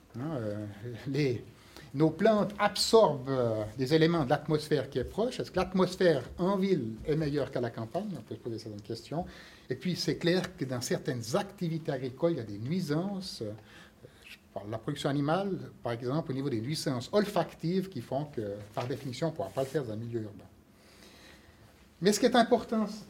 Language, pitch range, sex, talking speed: French, 140-200 Hz, male, 205 wpm